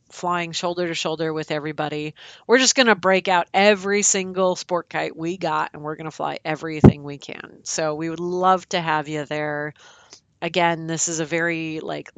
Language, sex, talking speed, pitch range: English, female, 185 wpm, 155-190 Hz